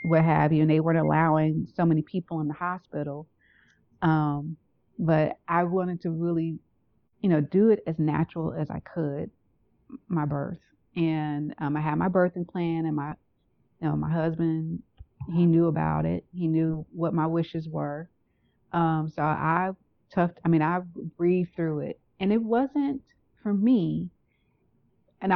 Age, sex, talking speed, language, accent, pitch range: 30-49, female, 165 wpm, English, American, 155-175 Hz